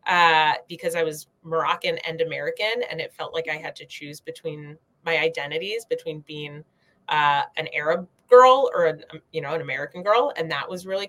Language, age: English, 20-39